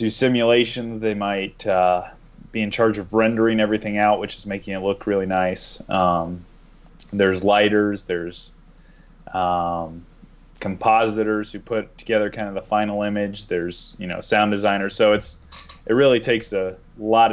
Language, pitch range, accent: English, 90-110 Hz, American